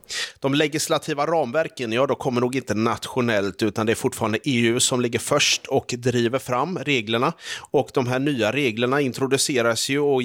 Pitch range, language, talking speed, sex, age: 110-135 Hz, Swedish, 170 wpm, male, 30-49